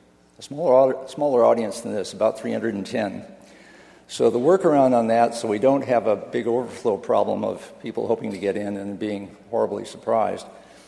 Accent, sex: American, male